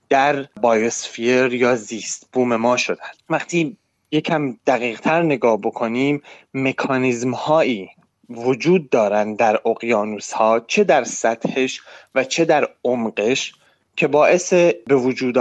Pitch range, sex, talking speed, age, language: 115-150 Hz, male, 110 wpm, 30-49, Persian